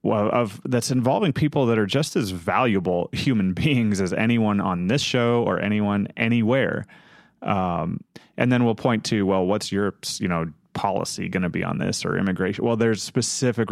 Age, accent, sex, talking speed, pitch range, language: 30-49, American, male, 185 wpm, 95-115 Hz, English